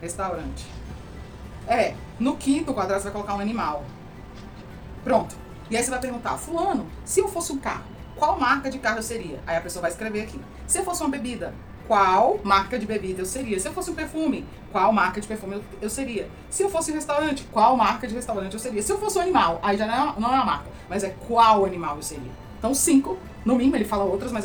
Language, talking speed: Portuguese, 230 wpm